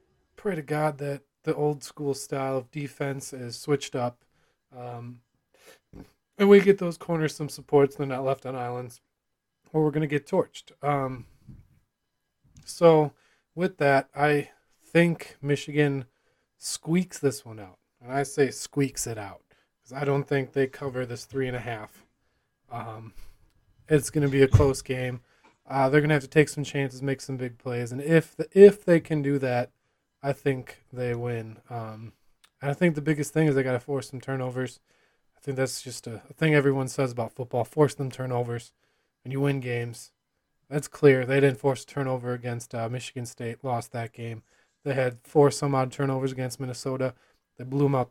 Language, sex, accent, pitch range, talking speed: English, male, American, 125-145 Hz, 190 wpm